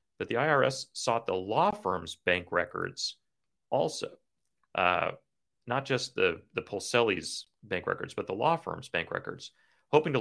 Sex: male